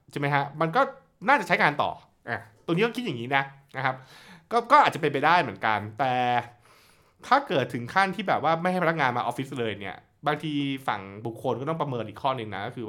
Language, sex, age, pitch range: Thai, male, 20-39, 120-160 Hz